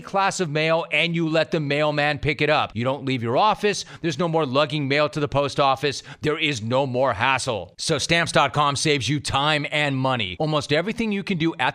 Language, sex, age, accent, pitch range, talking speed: English, male, 30-49, American, 130-165 Hz, 220 wpm